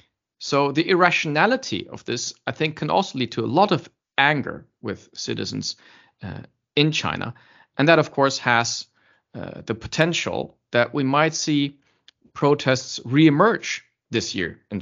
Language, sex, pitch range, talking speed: English, male, 120-165 Hz, 150 wpm